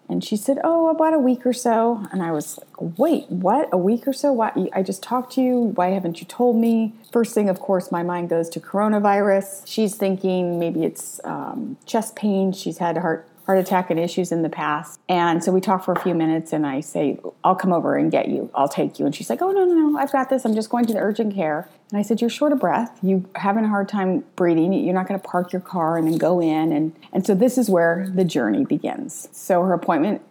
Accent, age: American, 30-49